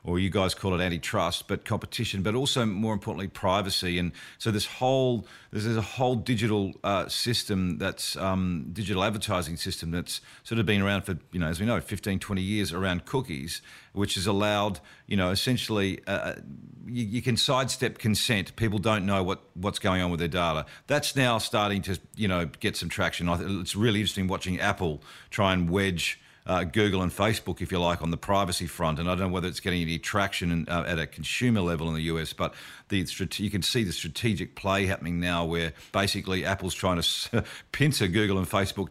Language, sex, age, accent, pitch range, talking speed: English, male, 40-59, Australian, 90-110 Hz, 200 wpm